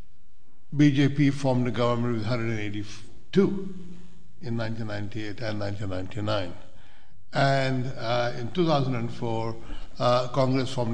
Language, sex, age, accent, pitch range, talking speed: English, male, 60-79, Indian, 110-170 Hz, 95 wpm